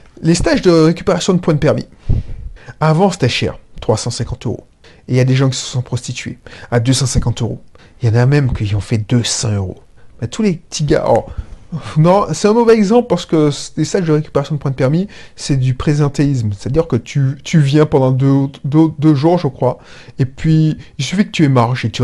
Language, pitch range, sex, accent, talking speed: French, 120-155 Hz, male, French, 220 wpm